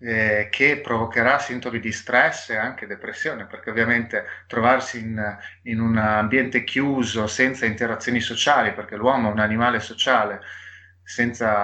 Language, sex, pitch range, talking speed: Italian, male, 110-130 Hz, 140 wpm